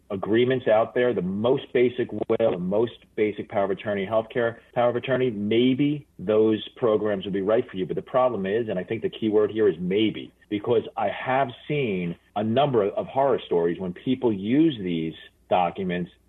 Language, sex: English, male